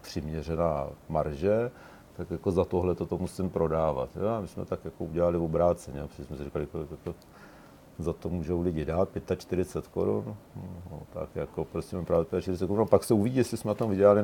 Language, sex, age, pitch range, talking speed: Czech, male, 50-69, 85-100 Hz, 195 wpm